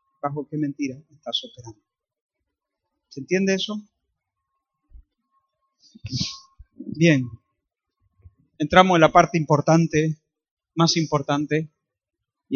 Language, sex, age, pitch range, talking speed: Spanish, male, 30-49, 145-190 Hz, 80 wpm